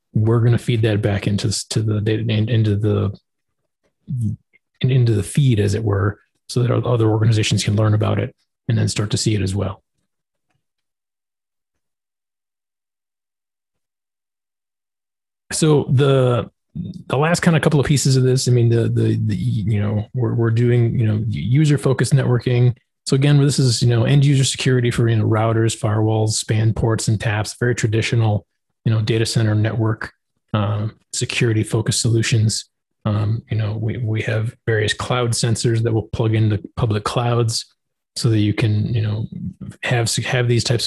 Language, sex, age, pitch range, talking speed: English, male, 30-49, 105-120 Hz, 165 wpm